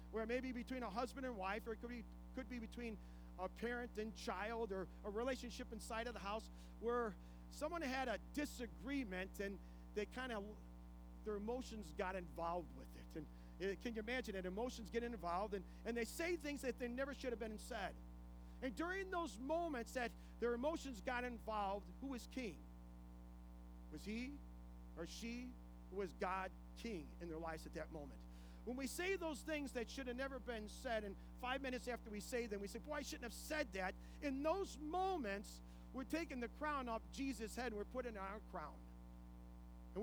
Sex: male